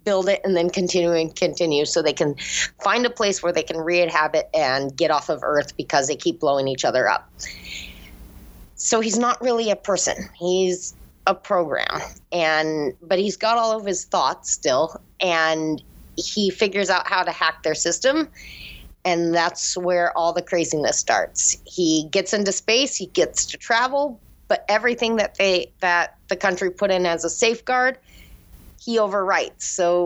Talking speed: 170 wpm